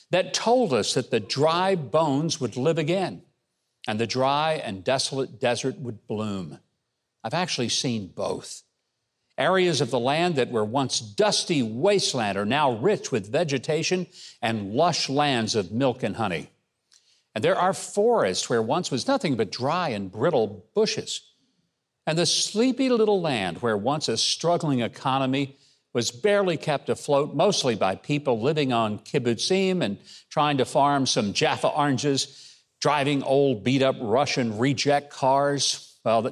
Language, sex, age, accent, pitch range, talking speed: English, male, 60-79, American, 125-170 Hz, 150 wpm